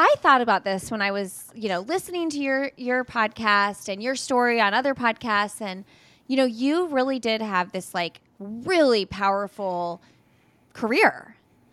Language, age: English, 20-39